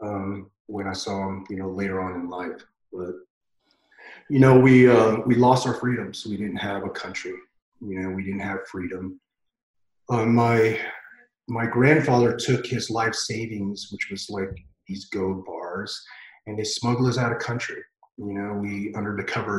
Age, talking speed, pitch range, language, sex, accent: 30-49, 180 wpm, 100-120 Hz, English, male, American